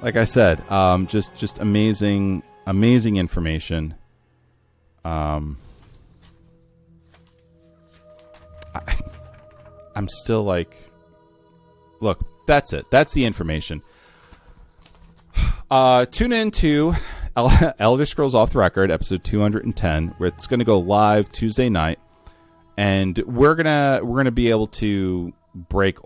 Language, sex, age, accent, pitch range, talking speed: English, male, 30-49, American, 80-110 Hz, 115 wpm